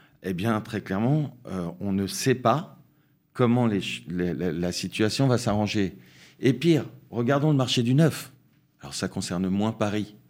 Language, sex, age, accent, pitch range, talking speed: French, male, 50-69, French, 95-130 Hz, 150 wpm